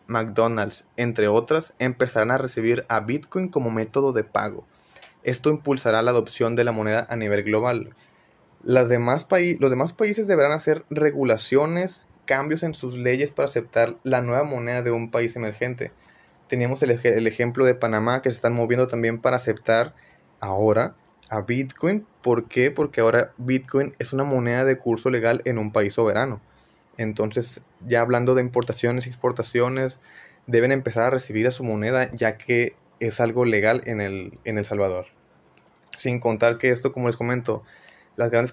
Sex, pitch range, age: male, 115-130 Hz, 20-39